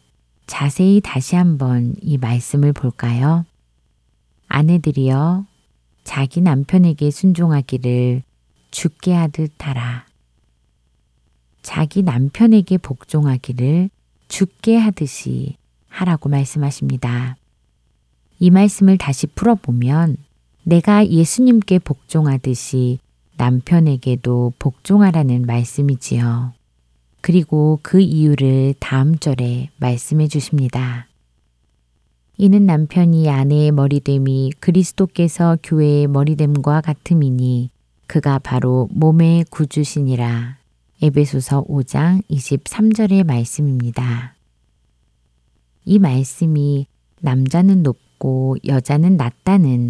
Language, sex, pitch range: Korean, female, 125-165 Hz